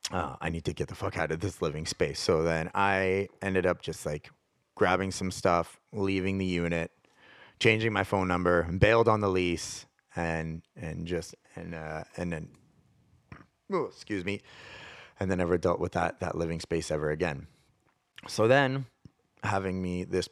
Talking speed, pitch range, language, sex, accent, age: 175 wpm, 85-105 Hz, English, male, American, 30-49